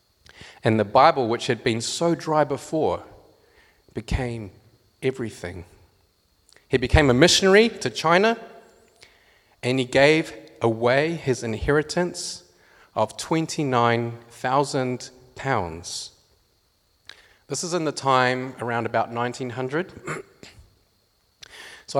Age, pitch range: 30-49, 105-135 Hz